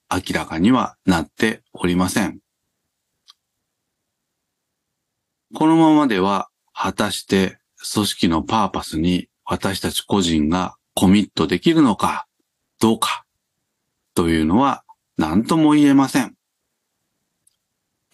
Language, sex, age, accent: Japanese, male, 40-59, native